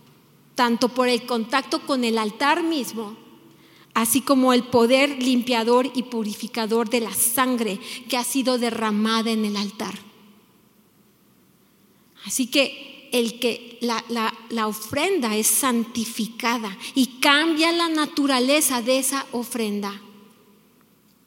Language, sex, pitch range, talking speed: Spanish, female, 235-320 Hz, 115 wpm